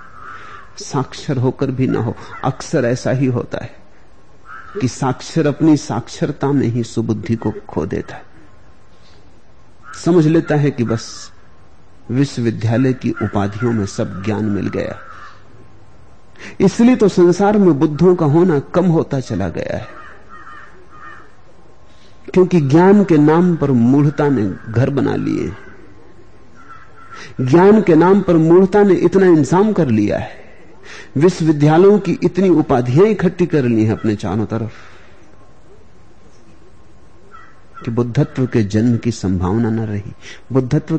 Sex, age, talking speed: male, 50-69, 125 wpm